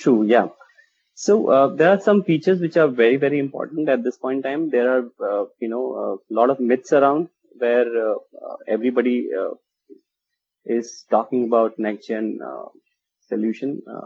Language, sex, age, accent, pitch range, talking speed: English, male, 30-49, Indian, 115-170 Hz, 160 wpm